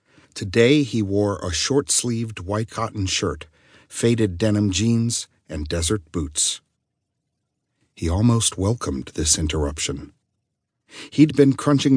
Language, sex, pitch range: English, male, 85-115 Hz